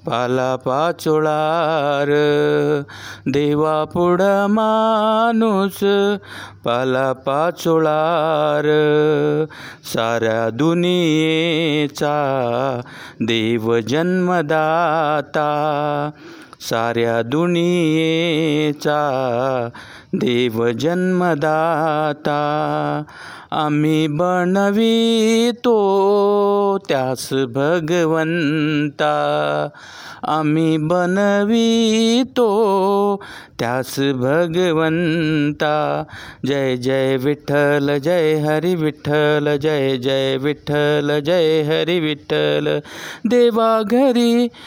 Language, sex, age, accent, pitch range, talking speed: Marathi, male, 50-69, native, 145-205 Hz, 50 wpm